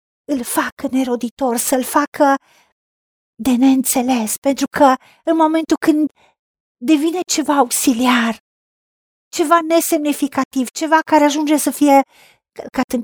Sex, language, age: female, Romanian, 40-59